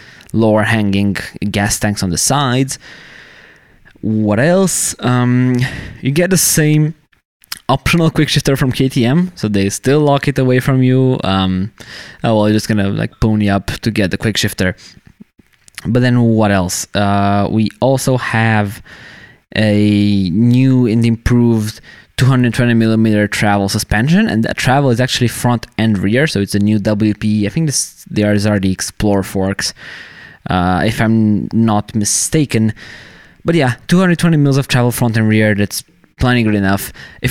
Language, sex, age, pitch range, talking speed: English, male, 20-39, 105-130 Hz, 155 wpm